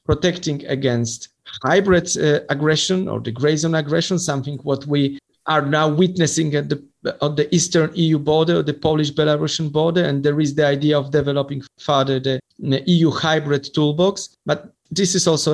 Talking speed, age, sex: 160 wpm, 40-59, male